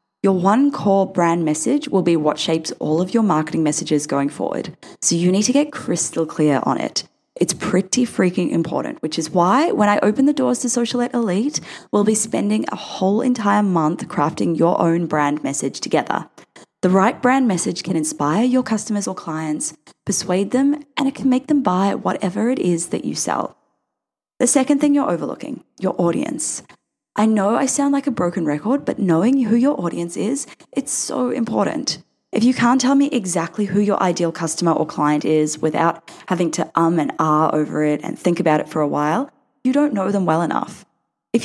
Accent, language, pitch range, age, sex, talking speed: Australian, English, 165-245 Hz, 10-29, female, 195 wpm